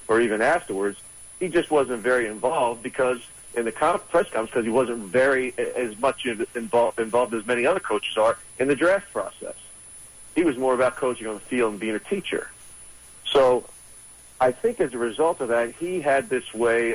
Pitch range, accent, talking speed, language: 110-130 Hz, American, 190 wpm, English